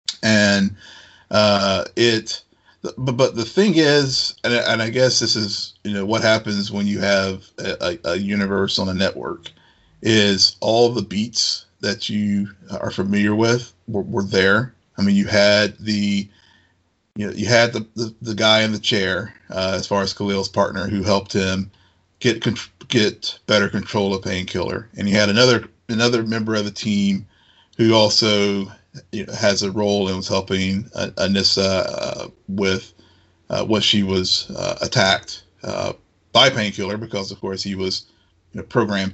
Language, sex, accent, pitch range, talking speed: English, male, American, 100-110 Hz, 160 wpm